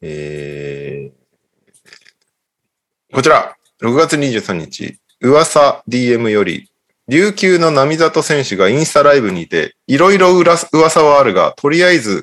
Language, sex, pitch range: Japanese, male, 105-165 Hz